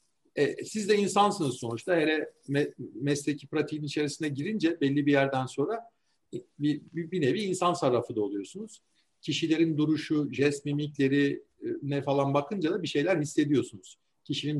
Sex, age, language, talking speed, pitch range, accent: male, 50-69, Turkish, 140 wpm, 135-180 Hz, native